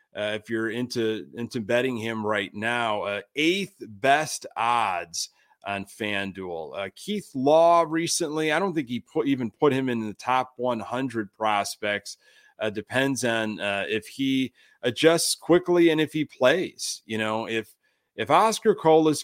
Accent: American